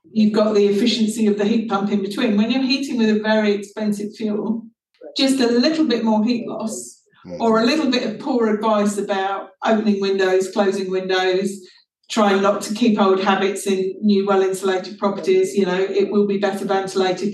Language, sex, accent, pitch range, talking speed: English, female, British, 200-230 Hz, 190 wpm